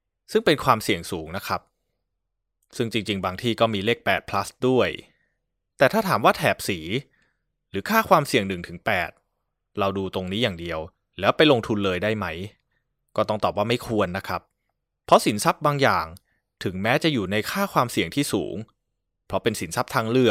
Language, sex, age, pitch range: Thai, male, 20-39, 95-120 Hz